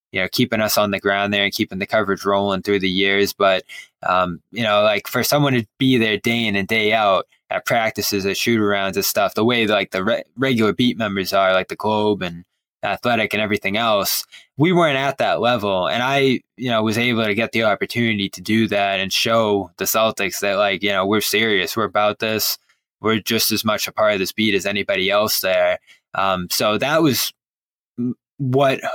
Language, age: English, 20-39